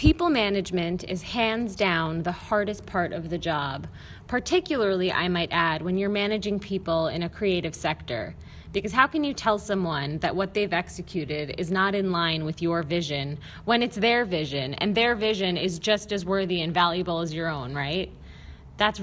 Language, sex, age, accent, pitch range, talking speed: English, female, 20-39, American, 170-220 Hz, 185 wpm